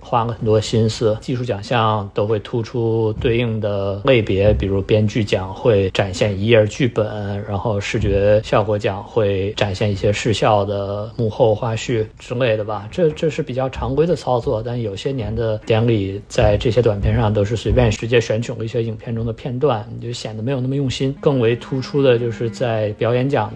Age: 50-69